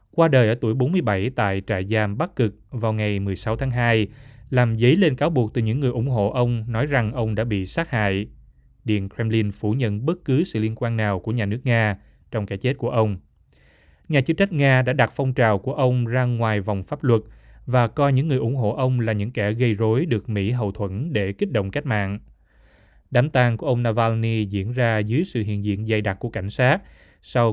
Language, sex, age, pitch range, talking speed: Vietnamese, male, 20-39, 105-130 Hz, 230 wpm